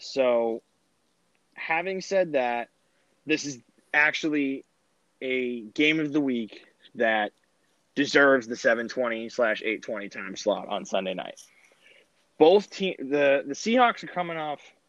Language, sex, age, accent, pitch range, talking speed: English, male, 20-39, American, 120-160 Hz, 135 wpm